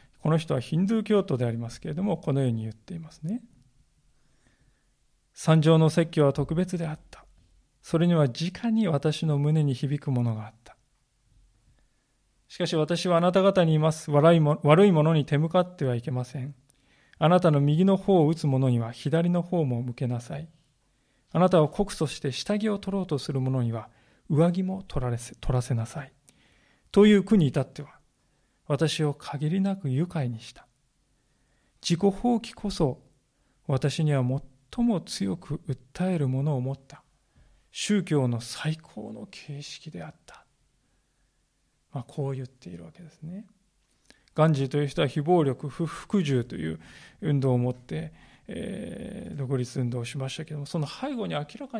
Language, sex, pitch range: Japanese, male, 130-170 Hz